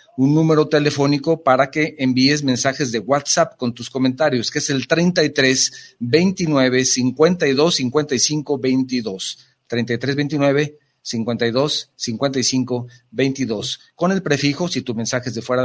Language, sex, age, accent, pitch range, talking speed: Spanish, male, 40-59, Mexican, 125-150 Hz, 130 wpm